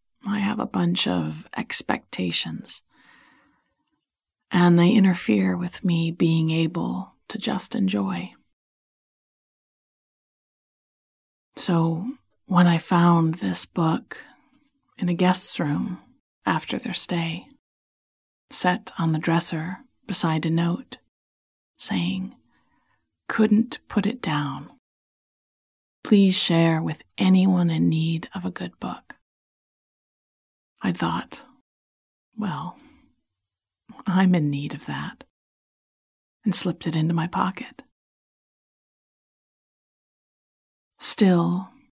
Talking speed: 95 wpm